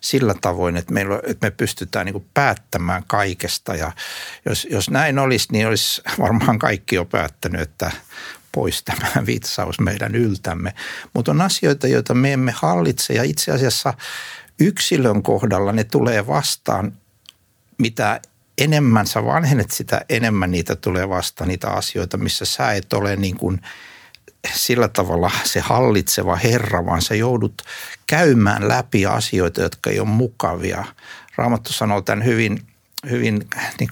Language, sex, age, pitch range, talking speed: Finnish, male, 60-79, 95-120 Hz, 135 wpm